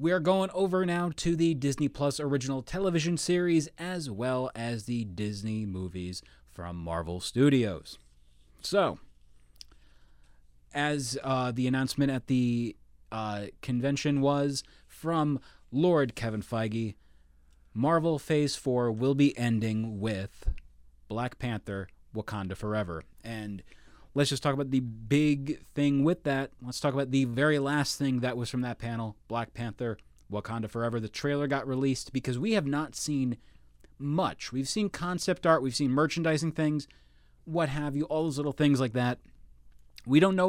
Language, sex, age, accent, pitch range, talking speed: English, male, 30-49, American, 100-145 Hz, 150 wpm